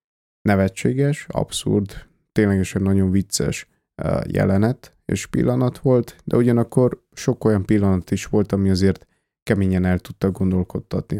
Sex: male